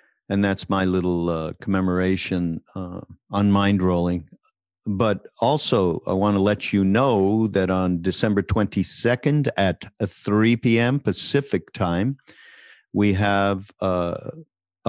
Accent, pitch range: American, 90-110 Hz